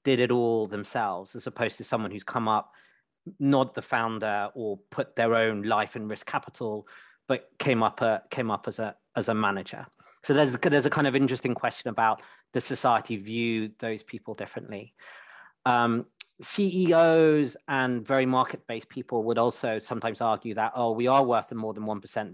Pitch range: 110-130 Hz